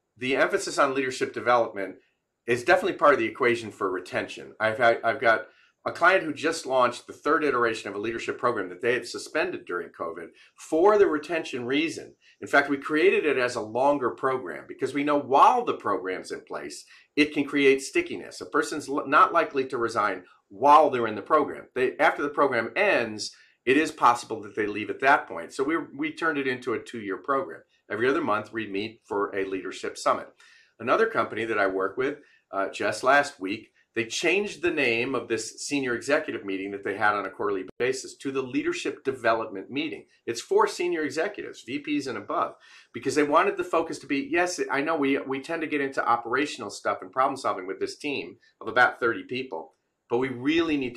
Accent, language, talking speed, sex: American, English, 205 wpm, male